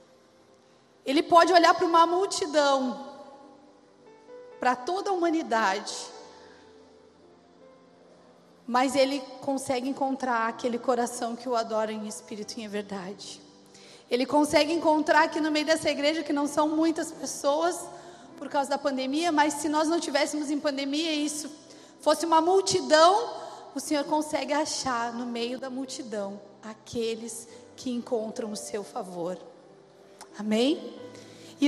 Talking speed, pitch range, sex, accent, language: 130 wpm, 235-300 Hz, female, Brazilian, Portuguese